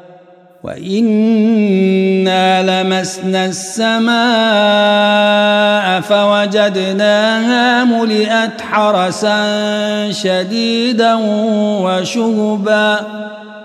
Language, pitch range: Arabic, 185-245 Hz